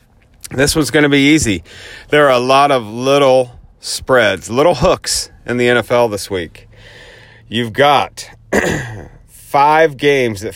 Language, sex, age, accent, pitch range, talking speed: English, male, 40-59, American, 115-145 Hz, 140 wpm